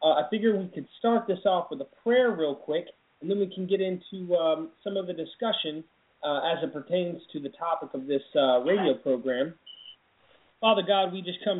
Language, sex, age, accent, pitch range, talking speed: English, male, 30-49, American, 145-190 Hz, 210 wpm